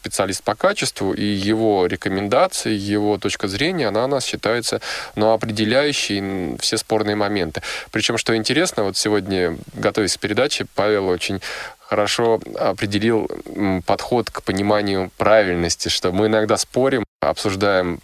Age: 20-39